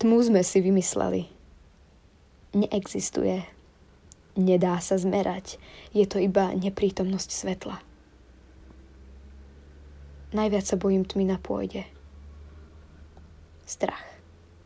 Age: 20-39